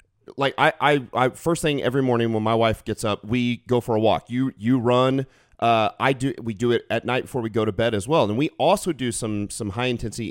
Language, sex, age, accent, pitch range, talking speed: English, male, 40-59, American, 105-125 Hz, 255 wpm